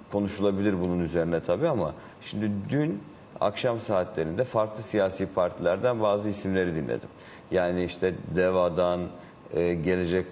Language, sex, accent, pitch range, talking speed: Turkish, male, native, 90-105 Hz, 110 wpm